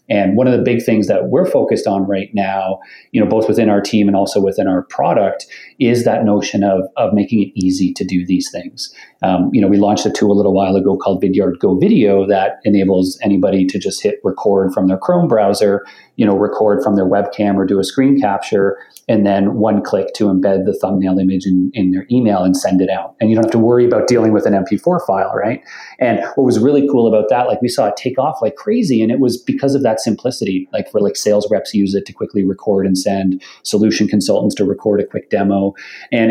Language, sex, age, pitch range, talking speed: English, male, 40-59, 95-115 Hz, 240 wpm